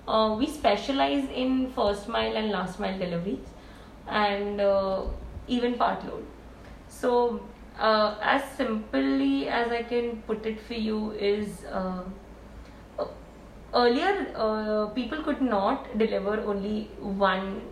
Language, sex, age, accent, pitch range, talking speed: English, female, 20-39, Indian, 200-245 Hz, 115 wpm